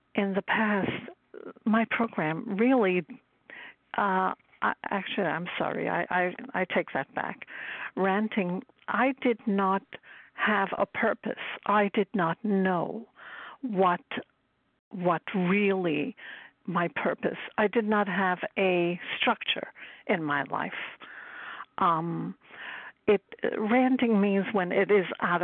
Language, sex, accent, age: English, female, American, 60-79